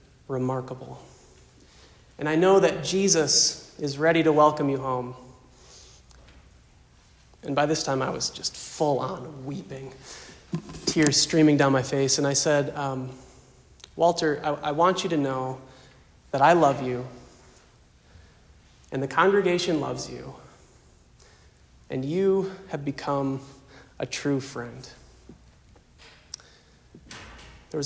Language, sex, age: English, male, 30-49